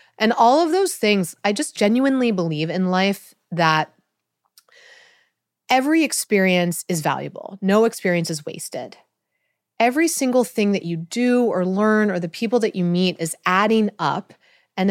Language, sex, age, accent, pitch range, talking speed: English, female, 30-49, American, 165-220 Hz, 155 wpm